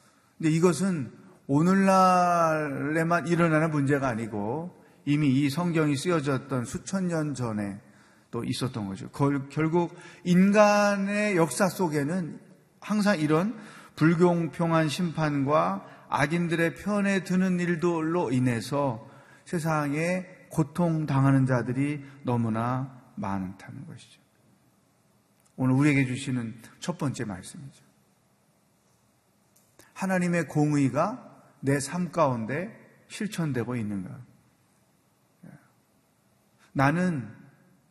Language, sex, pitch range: Korean, male, 130-175 Hz